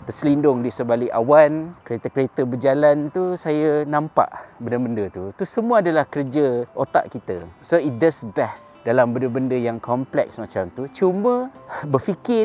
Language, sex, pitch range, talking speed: Malay, male, 125-165 Hz, 140 wpm